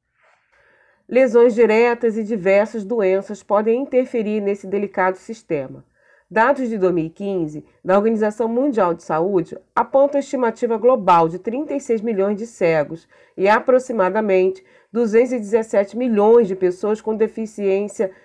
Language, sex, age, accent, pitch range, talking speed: Portuguese, female, 40-59, Brazilian, 185-240 Hz, 115 wpm